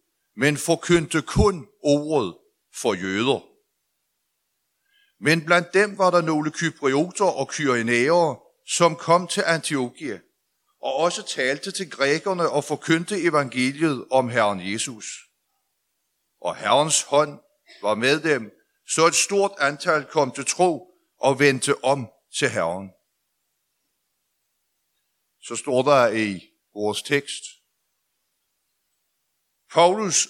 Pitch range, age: 135-185 Hz, 60-79